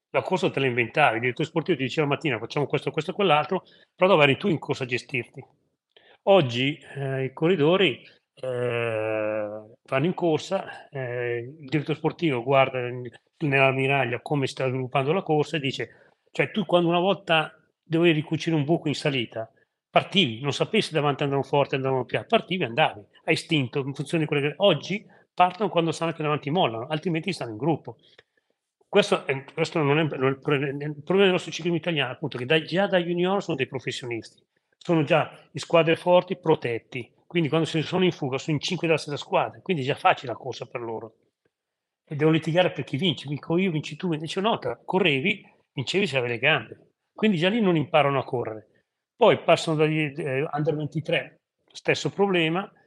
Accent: native